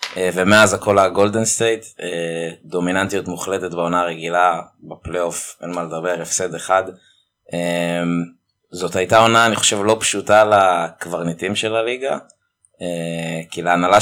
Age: 20-39